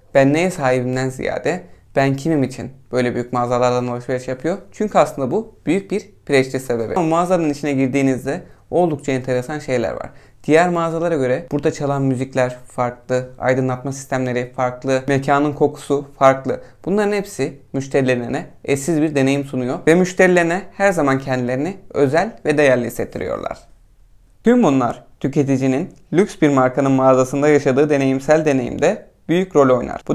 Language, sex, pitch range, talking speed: Turkish, male, 130-160 Hz, 135 wpm